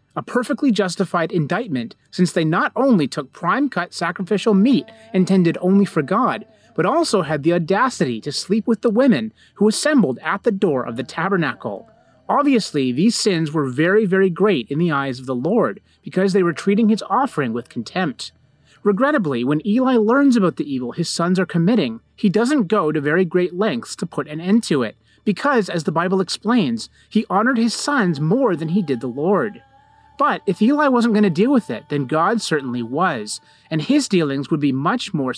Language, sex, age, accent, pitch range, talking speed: English, male, 30-49, American, 165-230 Hz, 195 wpm